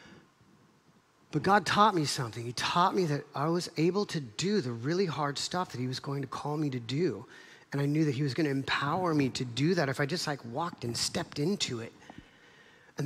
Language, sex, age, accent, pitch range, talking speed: English, male, 40-59, American, 130-170 Hz, 230 wpm